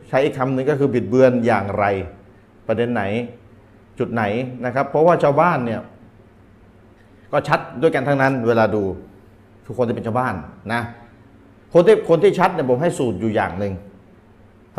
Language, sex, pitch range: Thai, male, 110-150 Hz